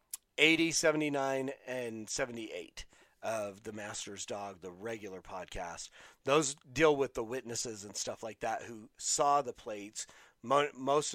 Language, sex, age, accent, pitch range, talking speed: English, male, 40-59, American, 125-155 Hz, 135 wpm